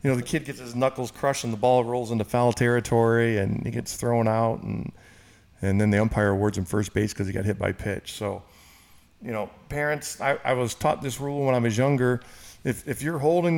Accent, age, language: American, 40-59, English